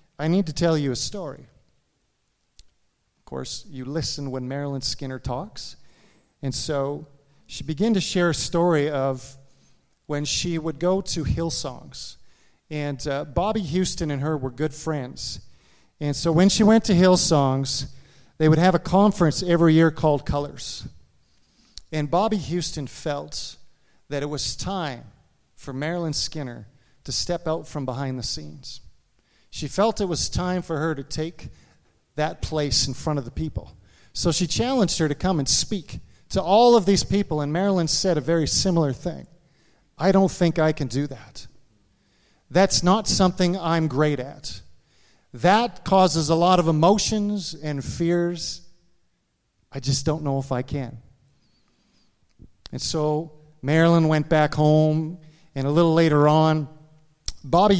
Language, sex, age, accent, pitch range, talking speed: English, male, 40-59, American, 135-175 Hz, 155 wpm